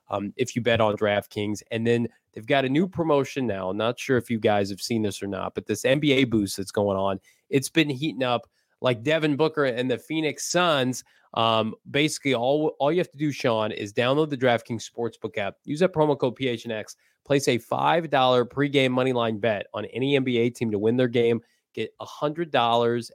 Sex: male